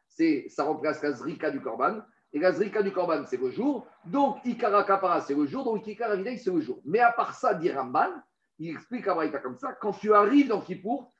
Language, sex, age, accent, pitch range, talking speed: French, male, 50-69, French, 170-275 Hz, 235 wpm